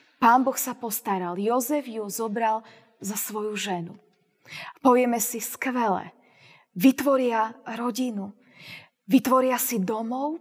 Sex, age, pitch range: female, 20-39, 215-265 Hz